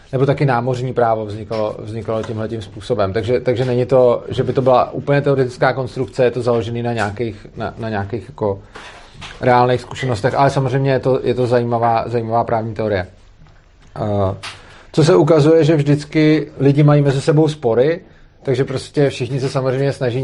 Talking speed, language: 170 wpm, Czech